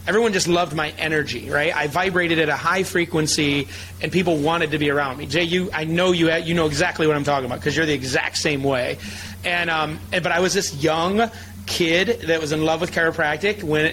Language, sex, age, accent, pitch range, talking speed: English, male, 30-49, American, 145-160 Hz, 230 wpm